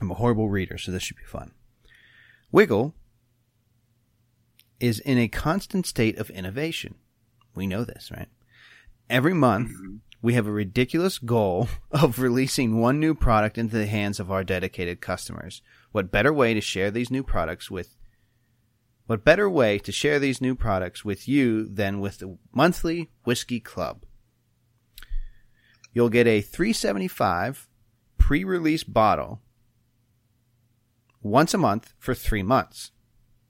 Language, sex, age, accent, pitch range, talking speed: English, male, 30-49, American, 105-120 Hz, 140 wpm